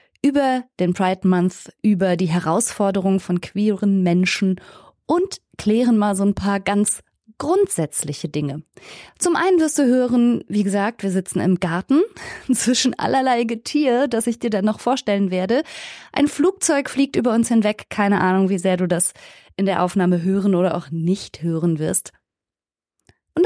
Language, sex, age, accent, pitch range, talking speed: German, female, 20-39, German, 180-240 Hz, 160 wpm